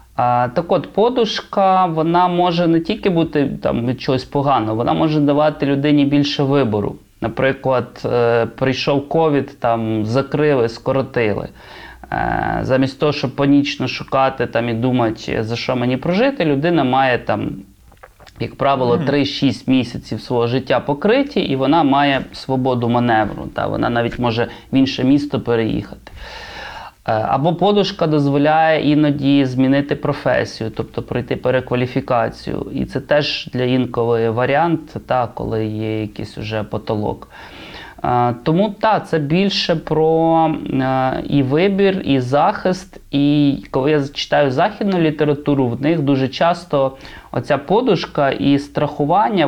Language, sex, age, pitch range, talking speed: Ukrainian, male, 20-39, 120-155 Hz, 125 wpm